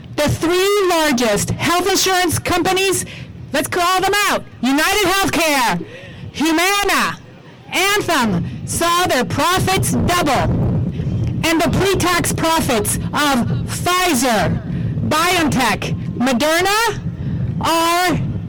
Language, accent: English, American